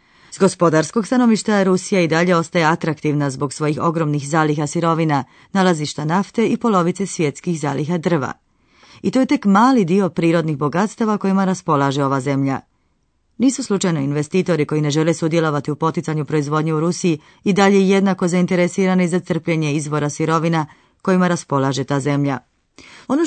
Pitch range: 150-195 Hz